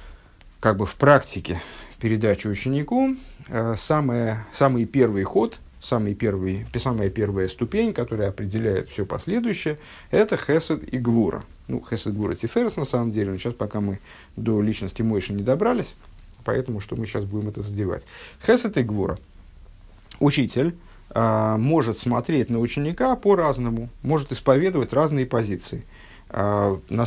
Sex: male